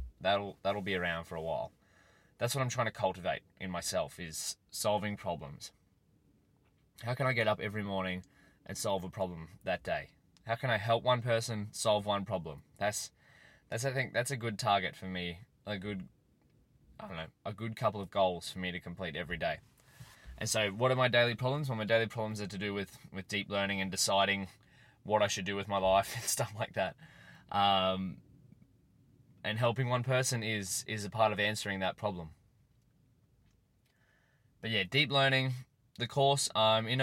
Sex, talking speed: male, 190 wpm